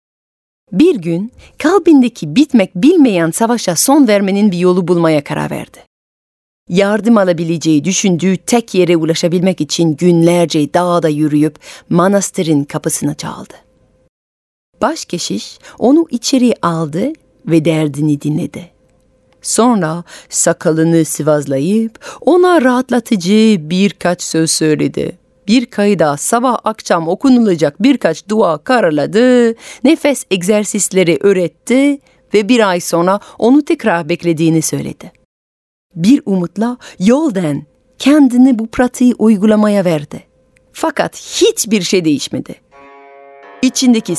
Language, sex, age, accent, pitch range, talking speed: Turkish, female, 40-59, native, 165-240 Hz, 100 wpm